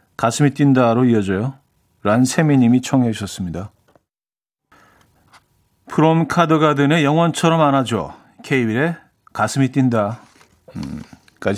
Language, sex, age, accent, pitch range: Korean, male, 40-59, native, 115-165 Hz